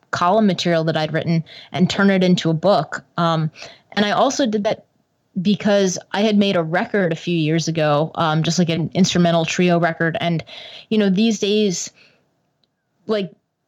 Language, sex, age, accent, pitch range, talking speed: English, female, 20-39, American, 170-205 Hz, 175 wpm